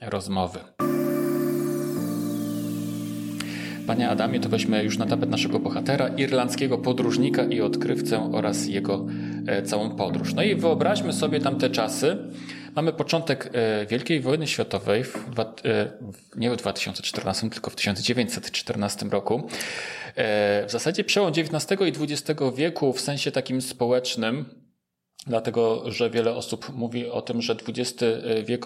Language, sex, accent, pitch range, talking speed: Polish, male, native, 105-130 Hz, 120 wpm